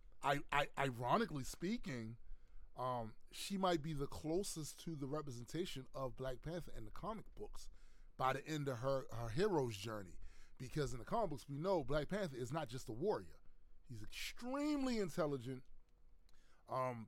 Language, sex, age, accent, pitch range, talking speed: English, male, 20-39, American, 105-160 Hz, 160 wpm